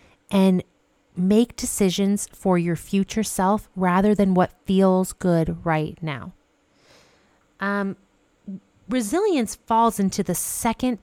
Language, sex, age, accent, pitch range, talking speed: English, female, 30-49, American, 170-215 Hz, 110 wpm